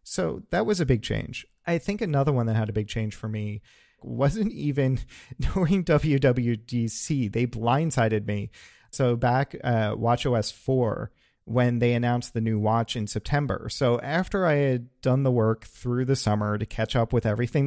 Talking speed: 180 wpm